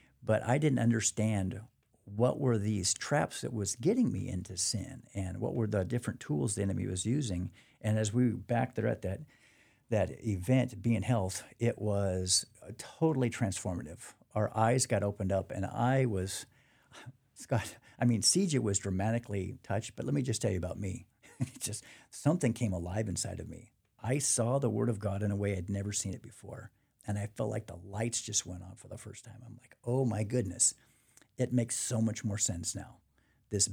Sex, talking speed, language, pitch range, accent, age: male, 195 wpm, English, 100-120 Hz, American, 50-69